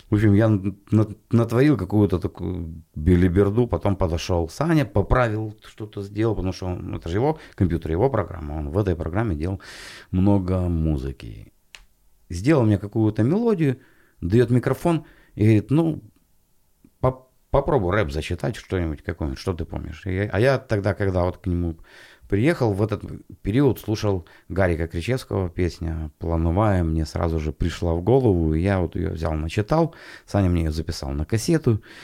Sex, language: male, Russian